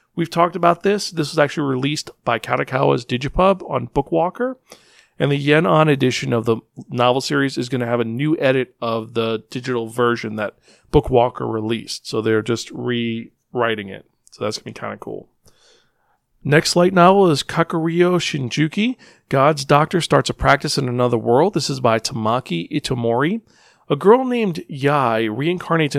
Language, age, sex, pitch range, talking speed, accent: English, 40-59, male, 120-155 Hz, 170 wpm, American